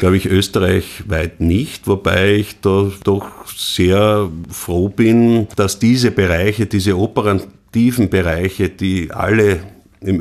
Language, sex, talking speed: German, male, 120 wpm